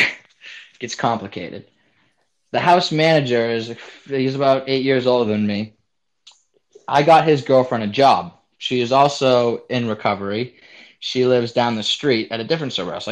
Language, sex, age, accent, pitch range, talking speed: English, male, 20-39, American, 115-145 Hz, 155 wpm